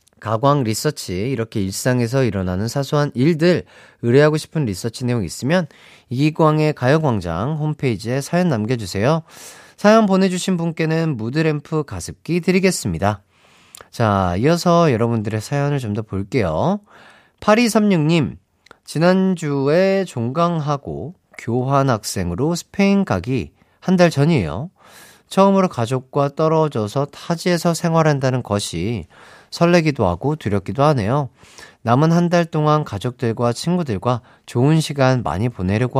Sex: male